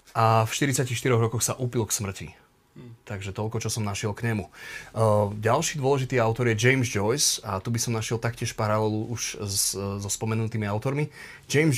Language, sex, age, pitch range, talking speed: Slovak, male, 30-49, 110-125 Hz, 175 wpm